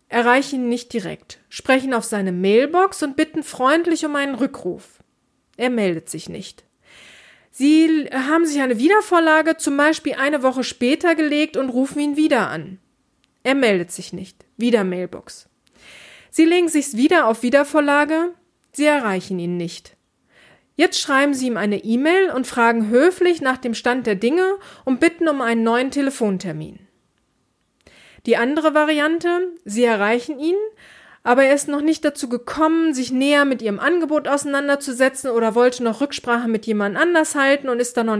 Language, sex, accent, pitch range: German, female, German, 235-310 Hz